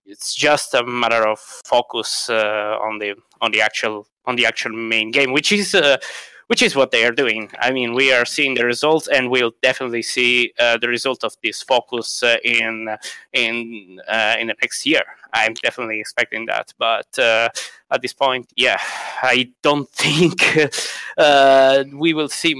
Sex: male